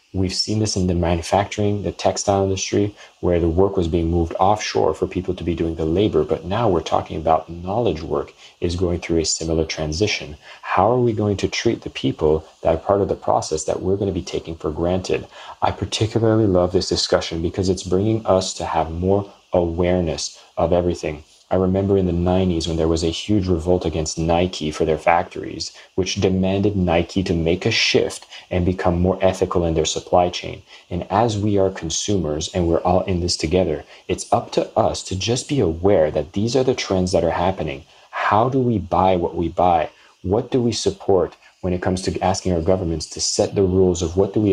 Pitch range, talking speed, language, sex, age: 85-95 Hz, 210 wpm, English, male, 30-49